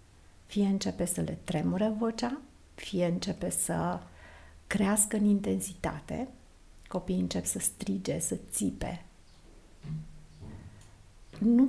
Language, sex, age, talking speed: Romanian, female, 50-69, 100 wpm